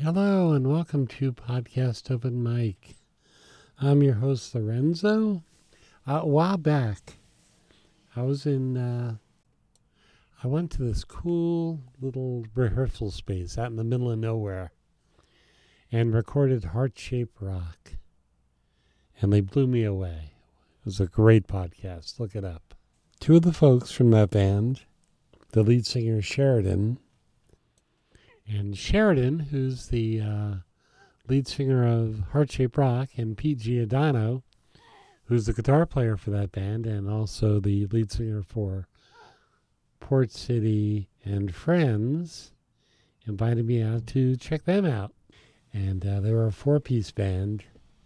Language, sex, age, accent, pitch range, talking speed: English, male, 50-69, American, 105-135 Hz, 130 wpm